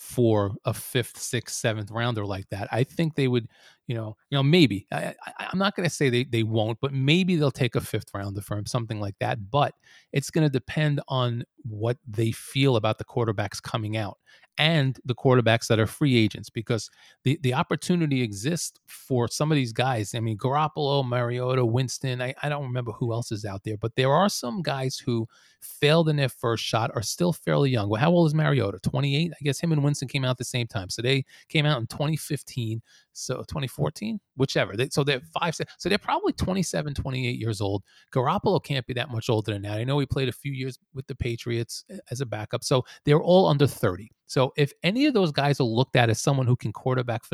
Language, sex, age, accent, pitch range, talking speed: English, male, 30-49, American, 115-145 Hz, 220 wpm